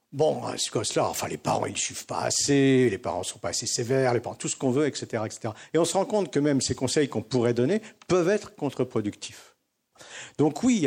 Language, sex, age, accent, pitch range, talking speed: French, male, 50-69, French, 105-135 Hz, 250 wpm